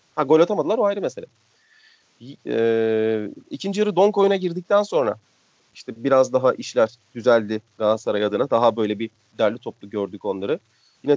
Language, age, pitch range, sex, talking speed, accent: Turkish, 40-59, 135-195 Hz, male, 150 wpm, native